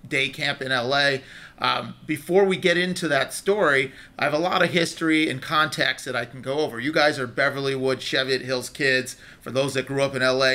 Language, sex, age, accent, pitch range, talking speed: English, male, 40-59, American, 135-180 Hz, 215 wpm